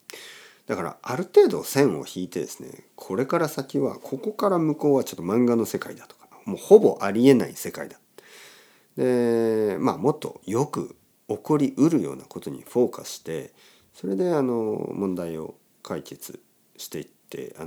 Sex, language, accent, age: male, Japanese, native, 50-69